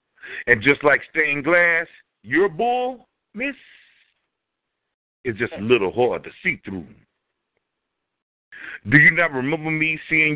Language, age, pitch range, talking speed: English, 50-69, 115-160 Hz, 125 wpm